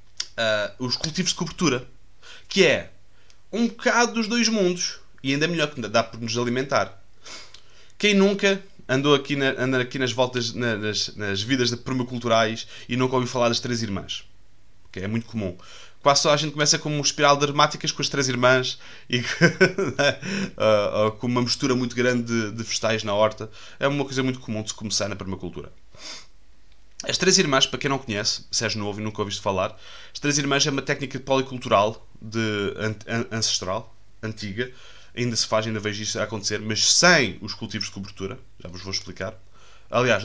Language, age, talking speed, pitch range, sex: Portuguese, 20-39, 185 wpm, 105-140 Hz, male